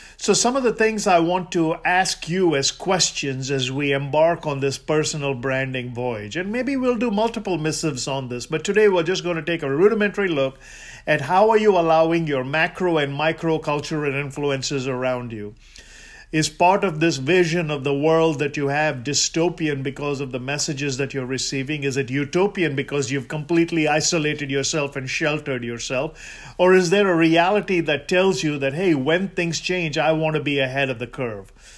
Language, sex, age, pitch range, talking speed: English, male, 50-69, 140-185 Hz, 190 wpm